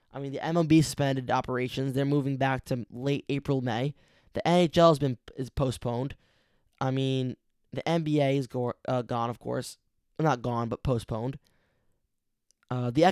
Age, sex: 10-29, male